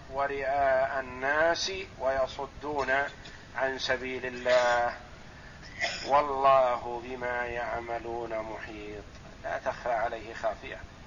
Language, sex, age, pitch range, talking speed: Arabic, male, 50-69, 120-145 Hz, 75 wpm